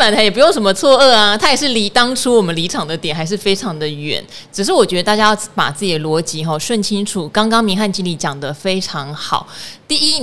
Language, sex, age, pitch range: Chinese, female, 30-49, 175-230 Hz